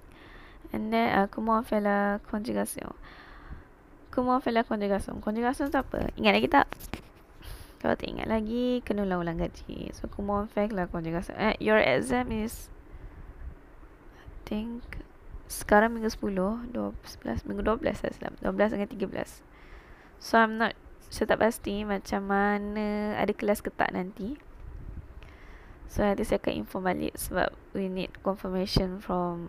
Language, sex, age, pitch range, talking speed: Malay, female, 20-39, 180-230 Hz, 120 wpm